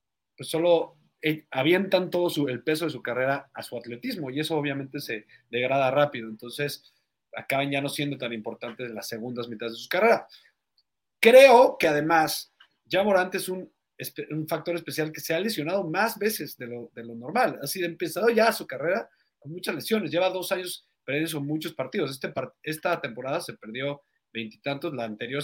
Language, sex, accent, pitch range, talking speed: Spanish, male, Mexican, 125-170 Hz, 180 wpm